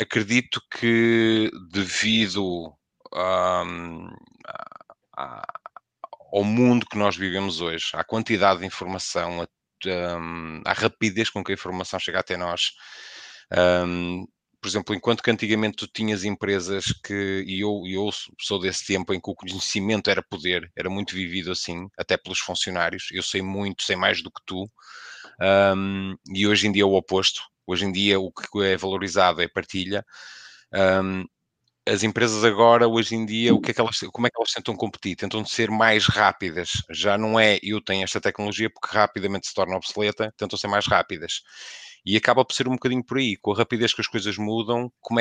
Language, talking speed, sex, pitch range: English, 170 wpm, male, 95-110 Hz